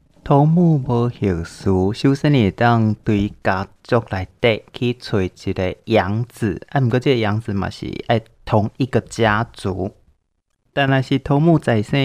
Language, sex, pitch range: Chinese, male, 100-125 Hz